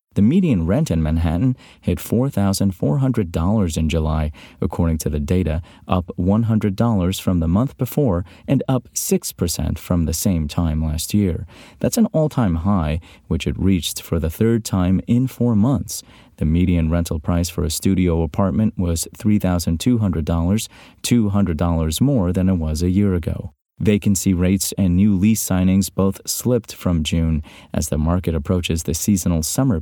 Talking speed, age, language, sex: 155 wpm, 30-49, English, male